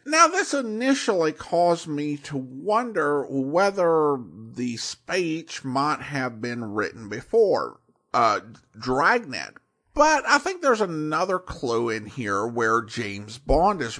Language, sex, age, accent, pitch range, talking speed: English, male, 50-69, American, 130-210 Hz, 125 wpm